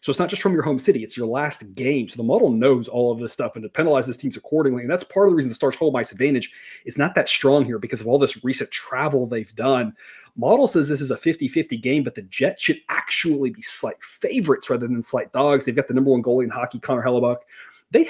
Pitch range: 120-140 Hz